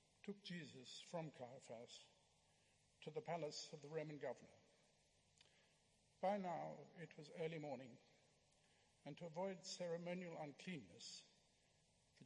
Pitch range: 150-200 Hz